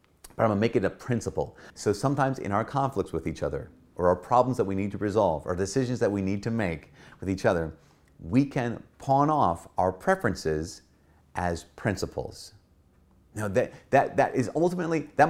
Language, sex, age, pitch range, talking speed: English, male, 30-49, 90-120 Hz, 185 wpm